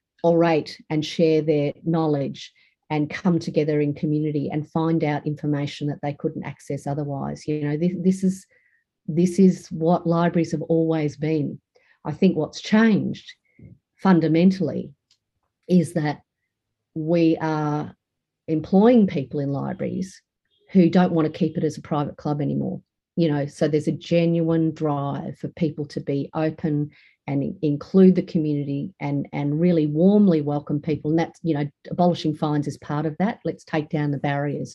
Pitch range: 150-170 Hz